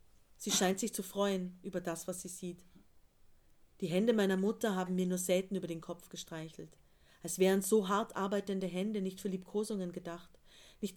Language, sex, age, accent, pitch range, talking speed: German, female, 40-59, German, 170-200 Hz, 180 wpm